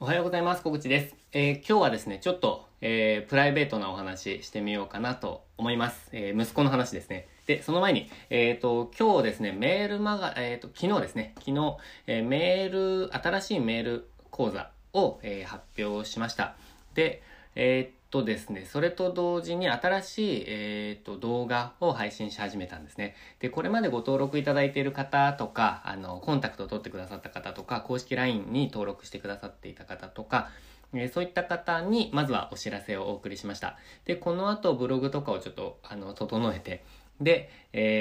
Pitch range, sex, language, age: 100-135 Hz, male, Japanese, 20-39